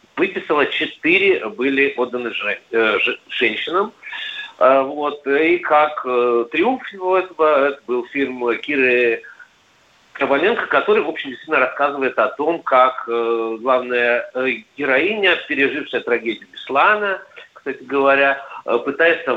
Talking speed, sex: 95 wpm, male